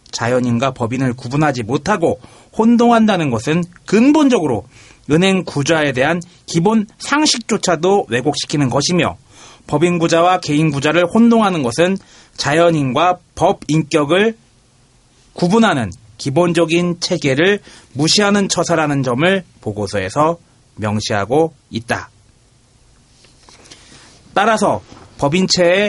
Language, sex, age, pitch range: Korean, male, 30-49, 130-180 Hz